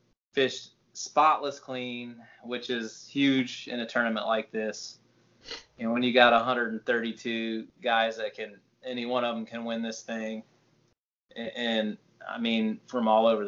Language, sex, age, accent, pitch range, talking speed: English, male, 20-39, American, 115-135 Hz, 150 wpm